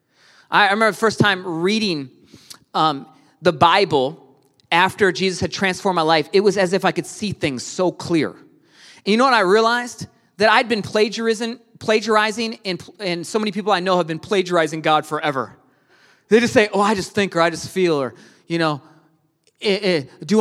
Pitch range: 170-240 Hz